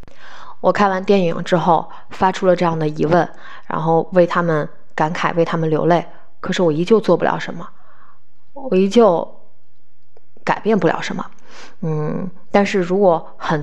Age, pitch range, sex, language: 20-39, 155-205 Hz, female, Chinese